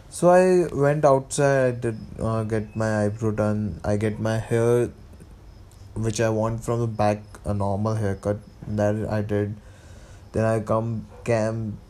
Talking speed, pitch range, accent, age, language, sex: 155 wpm, 105-120 Hz, native, 20-39, Hindi, male